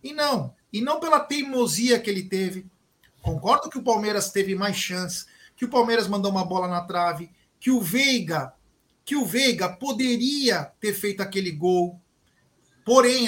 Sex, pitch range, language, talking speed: male, 175-235 Hz, Portuguese, 165 wpm